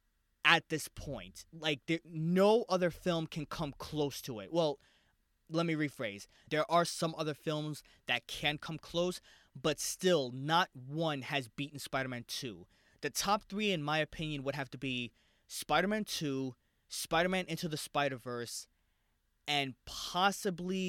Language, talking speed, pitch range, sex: English, 150 wpm, 125-160 Hz, male